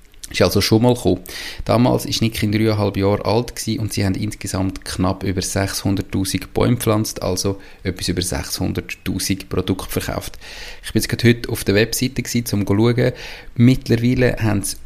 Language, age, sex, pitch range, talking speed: German, 30-49, male, 95-120 Hz, 160 wpm